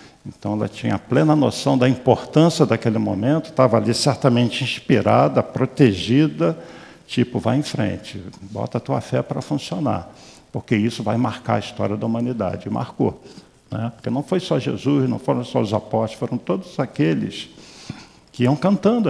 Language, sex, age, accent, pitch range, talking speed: Portuguese, male, 50-69, Brazilian, 110-140 Hz, 155 wpm